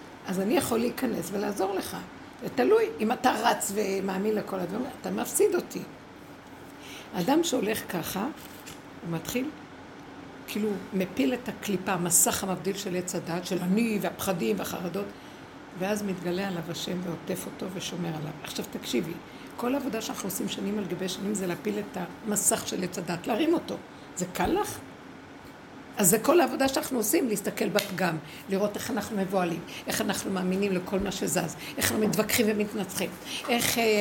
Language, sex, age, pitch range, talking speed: Hebrew, female, 60-79, 195-275 Hz, 155 wpm